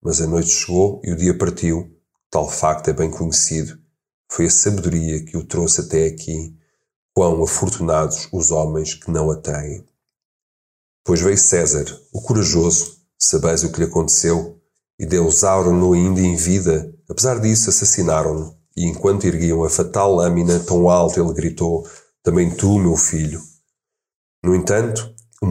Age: 40-59